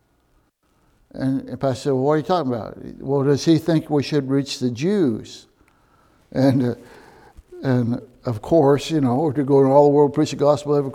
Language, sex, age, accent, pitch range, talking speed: English, male, 60-79, American, 145-205 Hz, 210 wpm